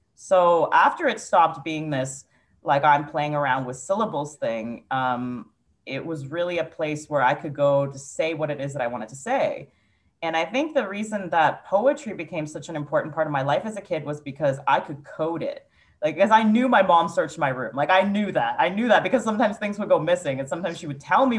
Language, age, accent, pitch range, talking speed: English, 30-49, American, 145-185 Hz, 240 wpm